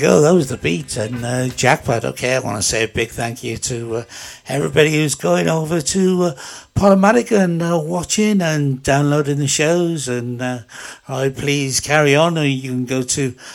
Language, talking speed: English, 195 wpm